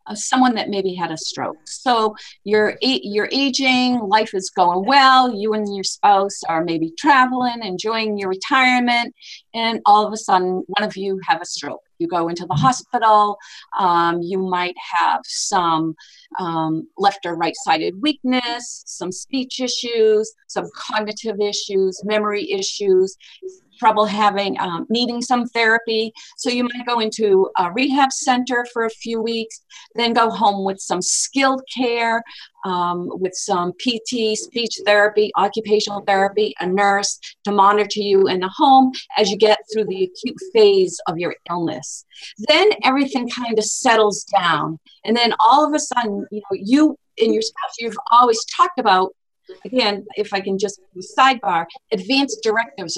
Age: 40-59